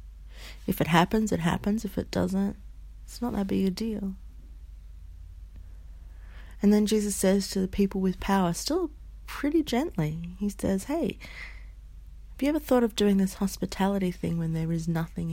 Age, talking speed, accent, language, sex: 30-49, 165 wpm, Australian, English, female